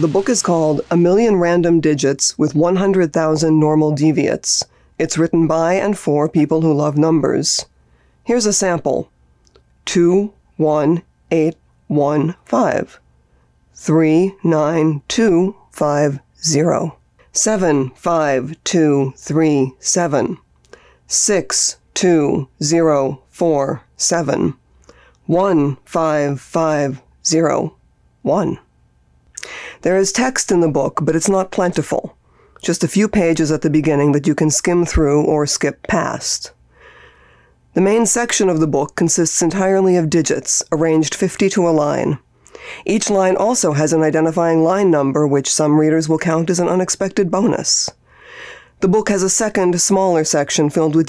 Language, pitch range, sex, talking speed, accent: English, 150-180 Hz, female, 110 wpm, American